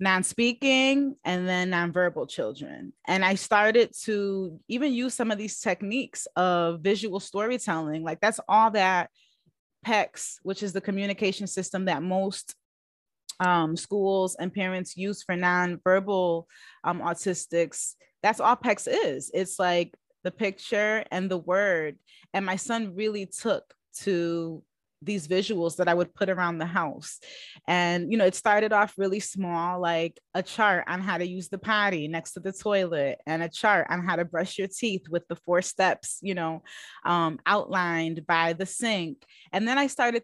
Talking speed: 165 wpm